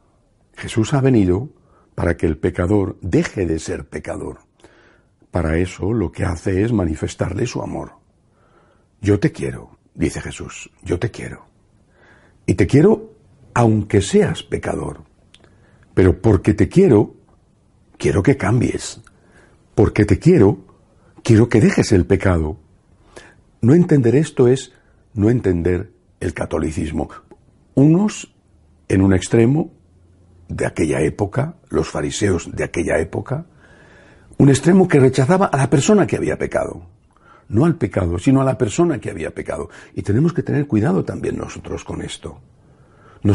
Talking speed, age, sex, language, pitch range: 135 wpm, 60-79, male, Spanish, 95-145 Hz